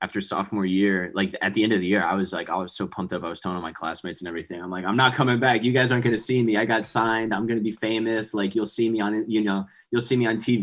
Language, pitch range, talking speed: English, 90-120 Hz, 320 wpm